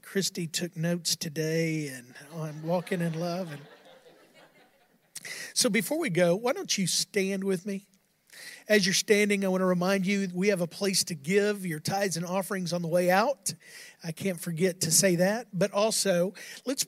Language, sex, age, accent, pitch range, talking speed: English, male, 50-69, American, 175-210 Hz, 185 wpm